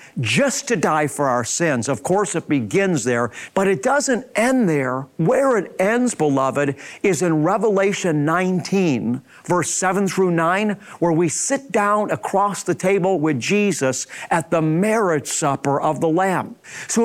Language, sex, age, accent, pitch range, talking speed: English, male, 50-69, American, 155-210 Hz, 160 wpm